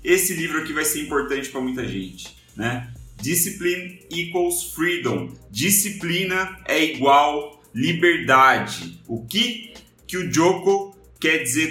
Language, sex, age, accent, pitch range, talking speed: Portuguese, male, 30-49, Brazilian, 130-170 Hz, 125 wpm